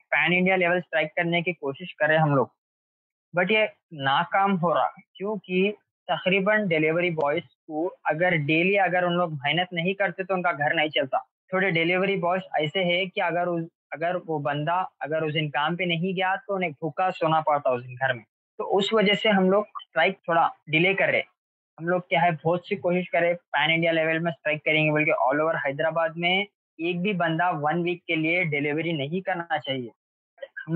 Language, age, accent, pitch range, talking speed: Hindi, 20-39, native, 155-180 Hz, 200 wpm